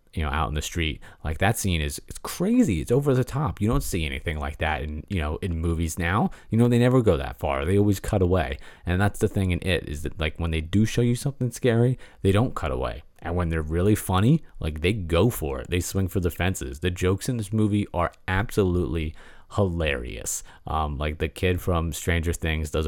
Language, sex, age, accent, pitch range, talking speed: English, male, 30-49, American, 80-105 Hz, 235 wpm